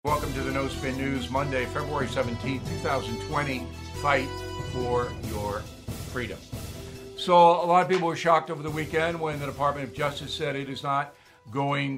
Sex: male